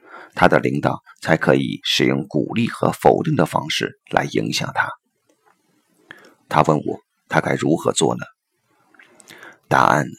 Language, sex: Chinese, male